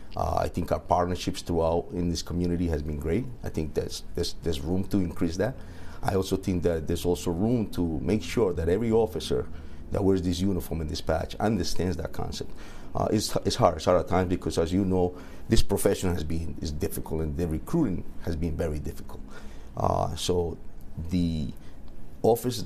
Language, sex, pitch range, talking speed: English, male, 80-95 Hz, 195 wpm